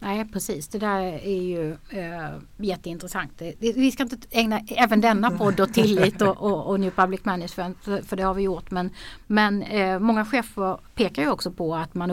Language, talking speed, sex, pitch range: Swedish, 195 wpm, female, 170-200 Hz